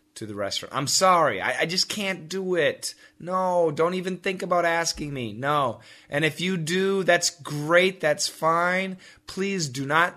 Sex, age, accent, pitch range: male, 30-49, American, 140-190 Hz